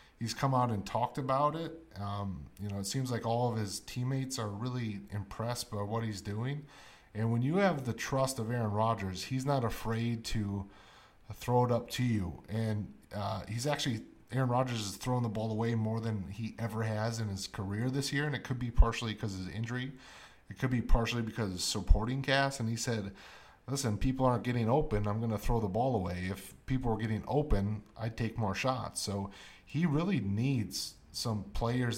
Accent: American